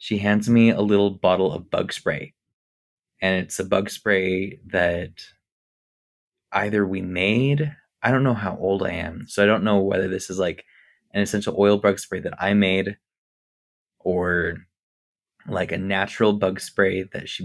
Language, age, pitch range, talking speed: English, 20-39, 95-105 Hz, 170 wpm